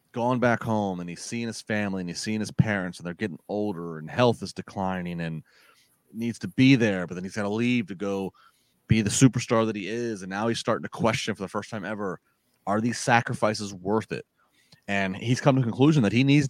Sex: male